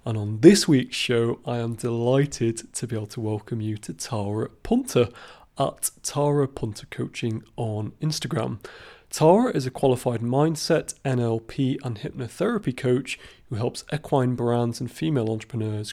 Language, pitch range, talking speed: English, 115-150 Hz, 145 wpm